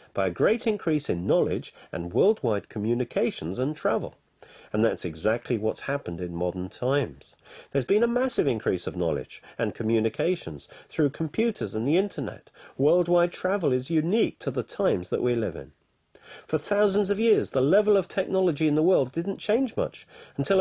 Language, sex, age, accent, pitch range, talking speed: English, male, 50-69, British, 125-200 Hz, 170 wpm